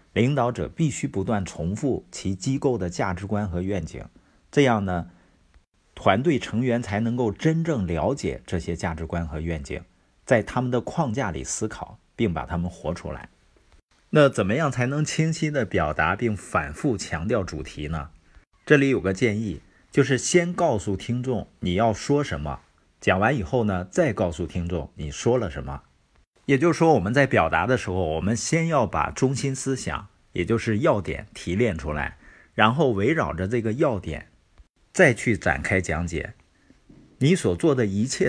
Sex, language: male, Chinese